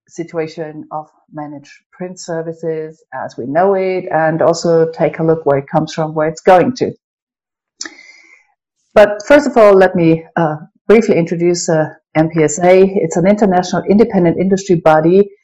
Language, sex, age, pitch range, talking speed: English, female, 50-69, 155-195 Hz, 150 wpm